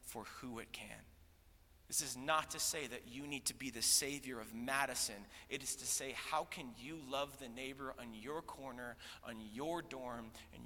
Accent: American